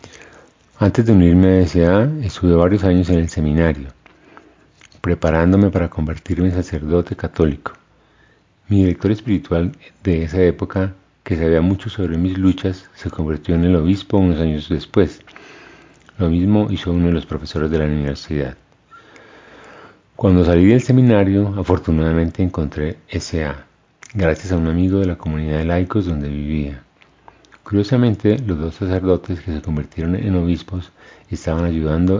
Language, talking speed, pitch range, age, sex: English, 140 wpm, 80-100 Hz, 40-59, male